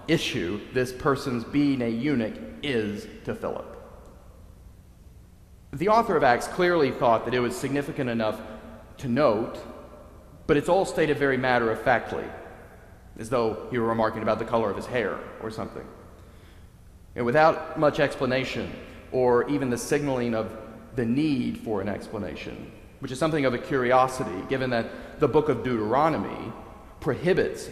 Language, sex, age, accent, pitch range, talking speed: English, male, 40-59, American, 110-140 Hz, 145 wpm